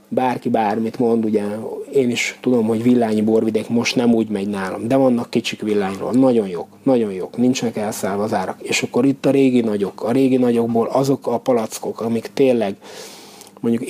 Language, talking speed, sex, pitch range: Hungarian, 180 wpm, male, 110-130 Hz